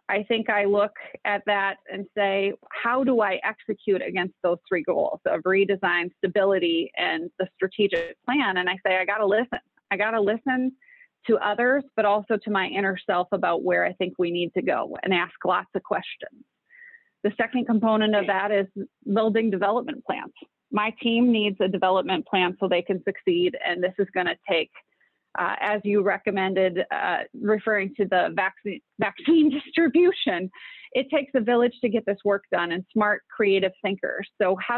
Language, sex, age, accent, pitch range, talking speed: English, female, 30-49, American, 190-235 Hz, 185 wpm